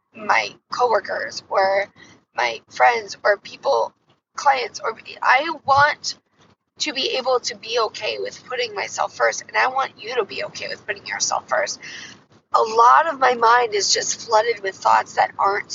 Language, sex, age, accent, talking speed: English, female, 10-29, American, 170 wpm